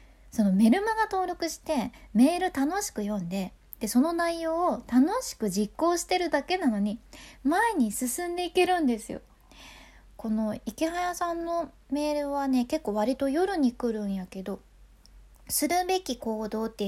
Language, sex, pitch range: Japanese, female, 225-305 Hz